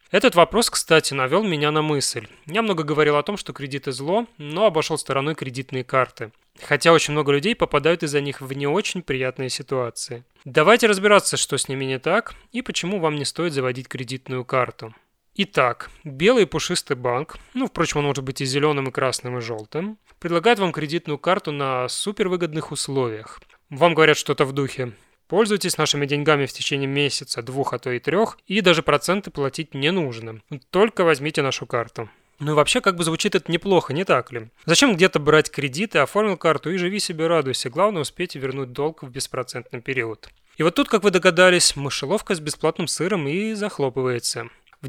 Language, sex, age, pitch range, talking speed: Russian, male, 20-39, 135-180 Hz, 180 wpm